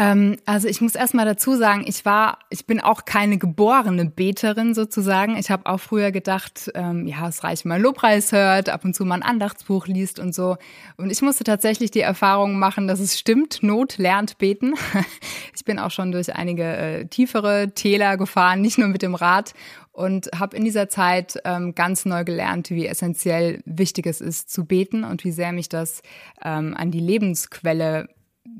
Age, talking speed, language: 20-39, 190 wpm, German